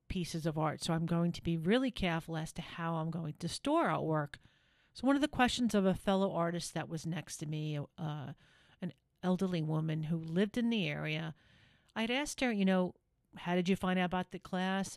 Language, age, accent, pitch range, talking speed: English, 40-59, American, 165-200 Hz, 220 wpm